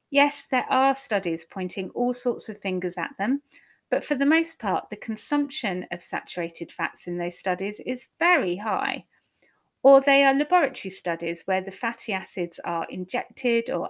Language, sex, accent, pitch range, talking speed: English, female, British, 185-260 Hz, 170 wpm